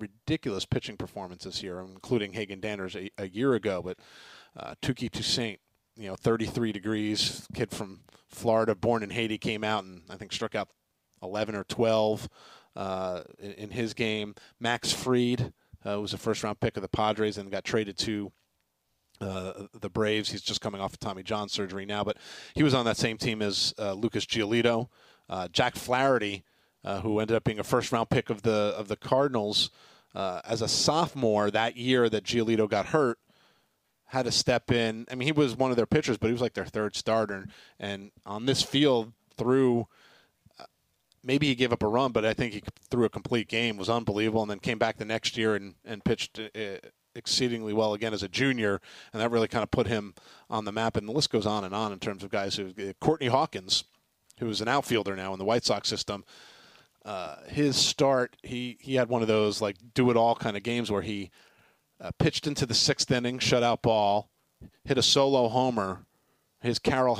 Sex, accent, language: male, American, English